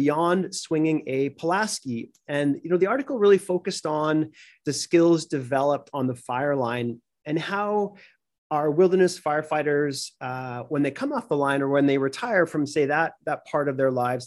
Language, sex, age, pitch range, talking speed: English, male, 30-49, 135-170 Hz, 180 wpm